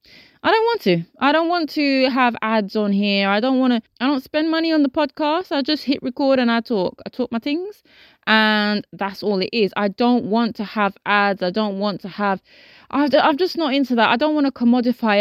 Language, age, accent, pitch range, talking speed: English, 20-39, British, 180-250 Hz, 235 wpm